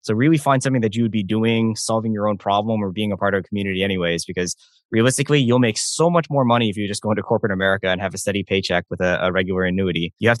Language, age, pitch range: English, 20-39, 95-110 Hz